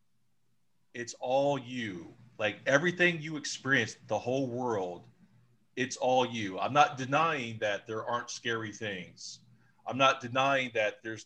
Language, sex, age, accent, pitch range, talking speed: English, male, 40-59, American, 105-125 Hz, 140 wpm